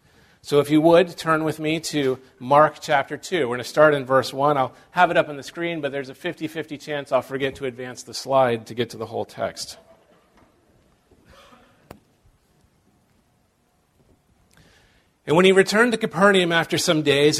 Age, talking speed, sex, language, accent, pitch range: 40-59, 175 wpm, male, English, American, 145-195 Hz